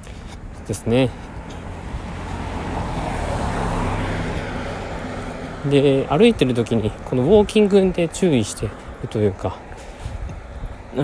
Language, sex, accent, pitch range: Japanese, male, native, 90-120 Hz